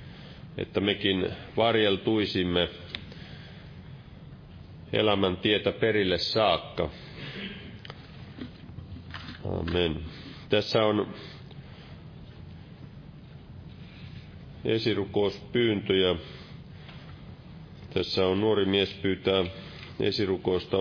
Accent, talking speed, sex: native, 50 wpm, male